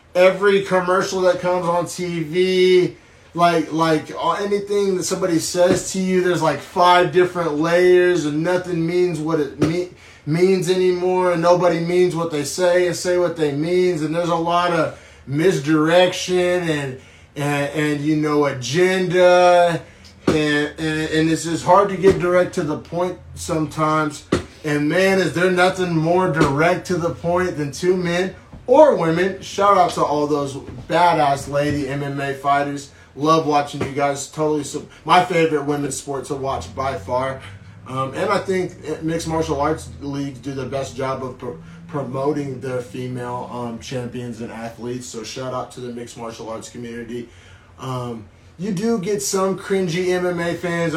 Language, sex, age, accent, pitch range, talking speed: English, male, 30-49, American, 135-180 Hz, 160 wpm